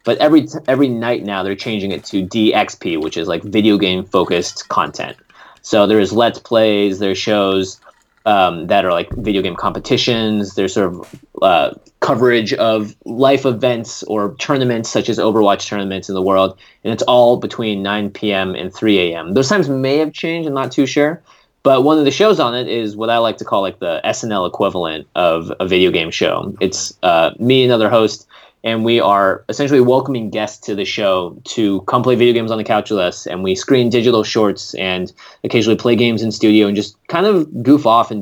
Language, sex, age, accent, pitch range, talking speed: English, male, 20-39, American, 100-125 Hz, 205 wpm